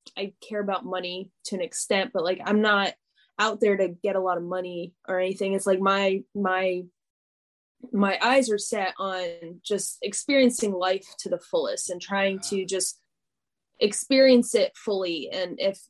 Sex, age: female, 10-29